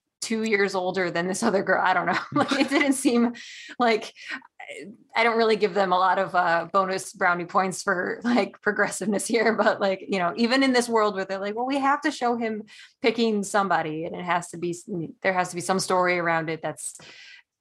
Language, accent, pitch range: English, American, 185-235 Hz